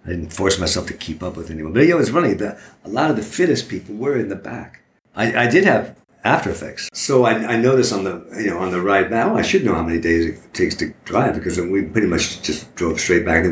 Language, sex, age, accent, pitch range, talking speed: English, male, 60-79, American, 80-100 Hz, 300 wpm